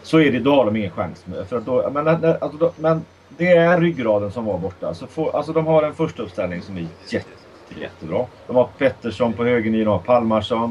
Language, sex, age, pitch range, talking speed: Swedish, male, 30-49, 95-120 Hz, 230 wpm